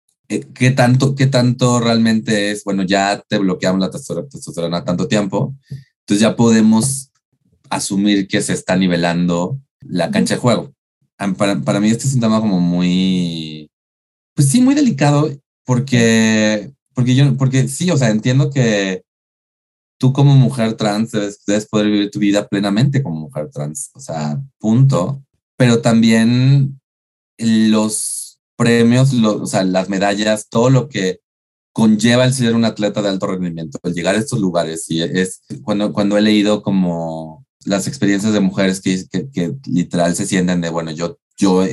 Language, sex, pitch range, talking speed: Spanish, male, 95-115 Hz, 160 wpm